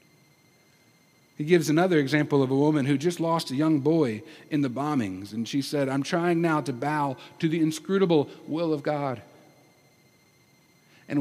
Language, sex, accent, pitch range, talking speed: English, male, American, 120-150 Hz, 165 wpm